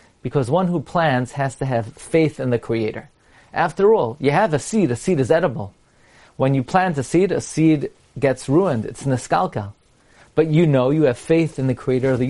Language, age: English, 40-59